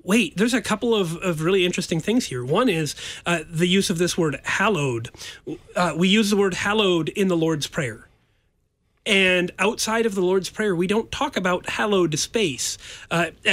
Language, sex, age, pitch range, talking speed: English, male, 30-49, 160-205 Hz, 185 wpm